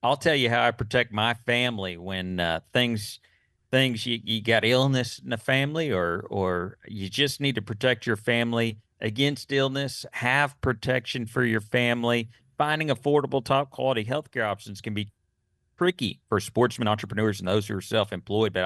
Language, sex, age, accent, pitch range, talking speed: English, male, 40-59, American, 100-130 Hz, 175 wpm